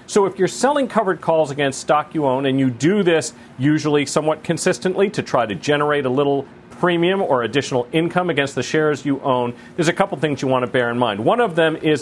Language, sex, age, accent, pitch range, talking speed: English, male, 40-59, American, 135-175 Hz, 230 wpm